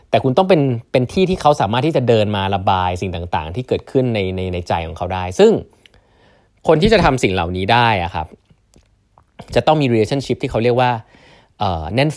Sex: male